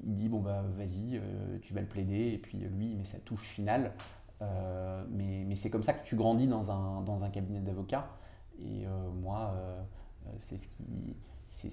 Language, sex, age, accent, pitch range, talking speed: French, male, 20-39, French, 95-115 Hz, 205 wpm